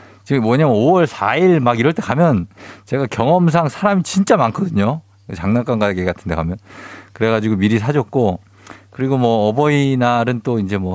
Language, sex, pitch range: Korean, male, 100-145 Hz